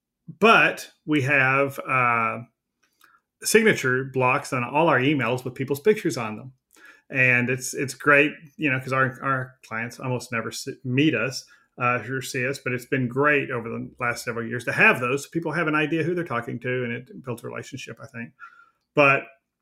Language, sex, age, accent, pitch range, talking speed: English, male, 40-59, American, 120-145 Hz, 190 wpm